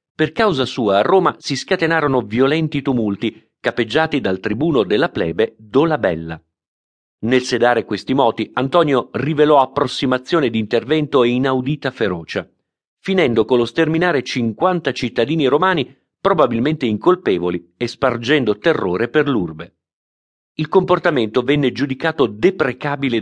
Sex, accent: male, native